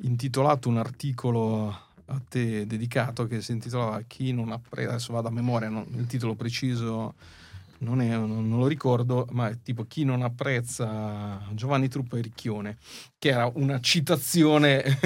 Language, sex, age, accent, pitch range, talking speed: Italian, male, 40-59, native, 115-135 Hz, 160 wpm